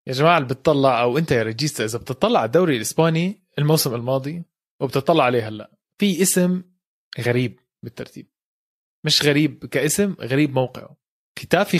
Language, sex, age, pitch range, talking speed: Arabic, male, 20-39, 130-175 Hz, 130 wpm